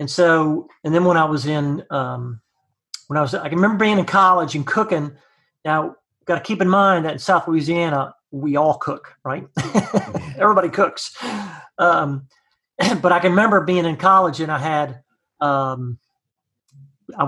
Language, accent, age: English, American, 40-59